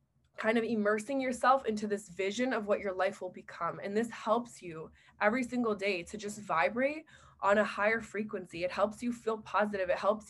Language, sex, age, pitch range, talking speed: English, female, 20-39, 185-230 Hz, 200 wpm